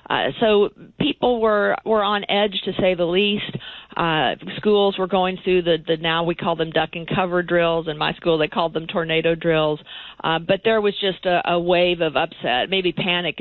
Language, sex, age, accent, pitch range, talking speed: English, female, 40-59, American, 160-195 Hz, 205 wpm